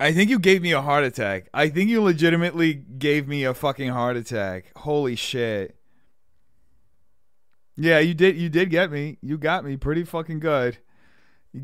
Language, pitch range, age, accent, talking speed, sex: English, 130-180 Hz, 30-49, American, 175 wpm, male